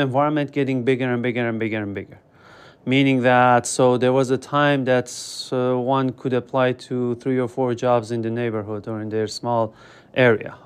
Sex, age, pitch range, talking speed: male, 30-49, 120-145 Hz, 185 wpm